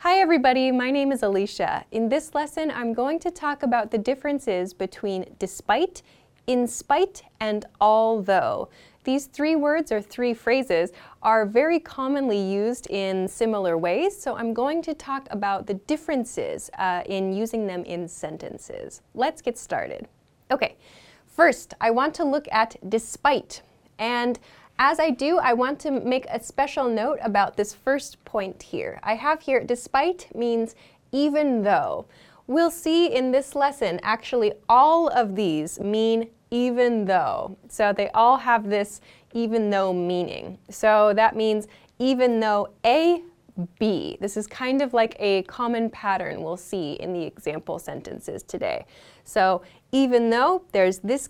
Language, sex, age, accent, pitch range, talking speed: English, female, 10-29, American, 205-280 Hz, 150 wpm